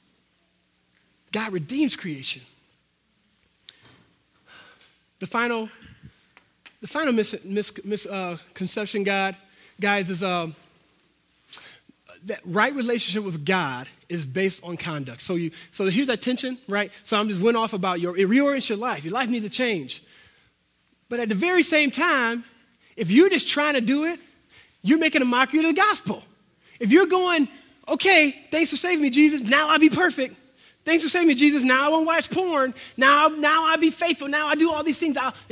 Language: English